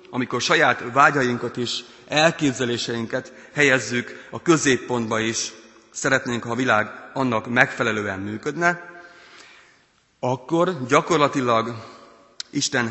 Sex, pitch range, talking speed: male, 110-130 Hz, 90 wpm